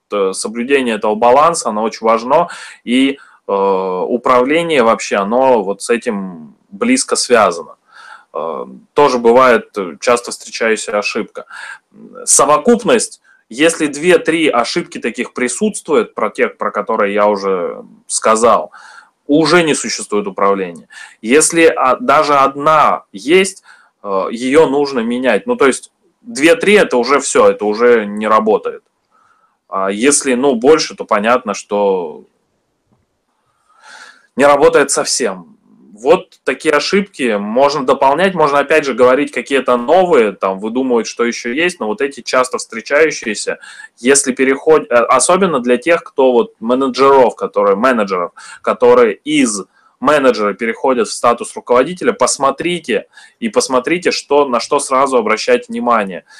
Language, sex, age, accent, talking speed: Russian, male, 20-39, native, 120 wpm